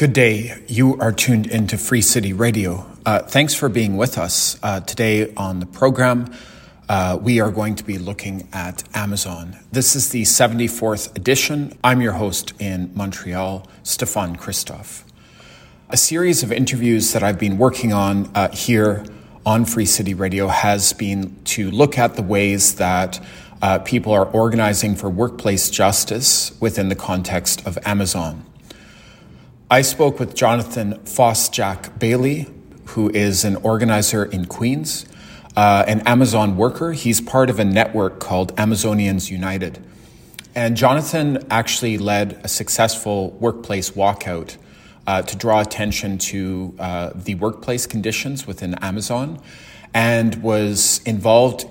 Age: 30-49